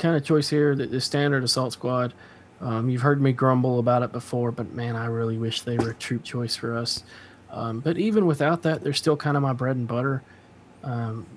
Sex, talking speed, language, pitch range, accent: male, 220 wpm, English, 120-135 Hz, American